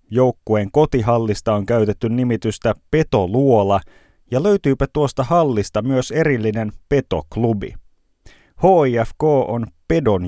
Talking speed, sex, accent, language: 95 wpm, male, native, Finnish